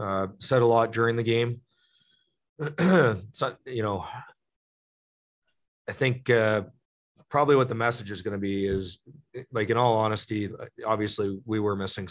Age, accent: 30-49, American